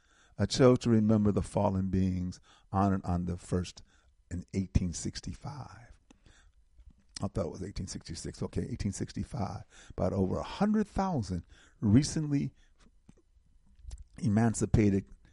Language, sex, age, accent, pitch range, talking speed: English, male, 50-69, American, 80-110 Hz, 100 wpm